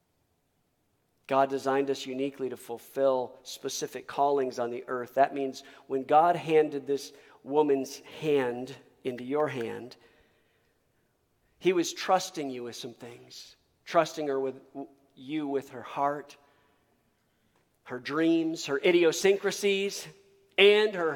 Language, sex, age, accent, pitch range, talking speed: English, male, 50-69, American, 130-155 Hz, 120 wpm